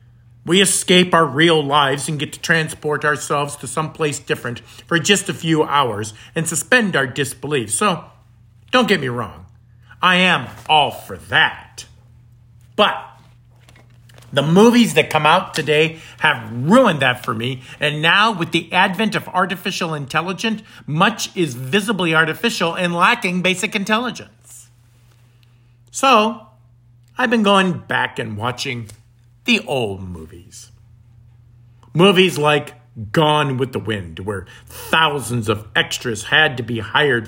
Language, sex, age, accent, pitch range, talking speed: English, male, 50-69, American, 120-180 Hz, 135 wpm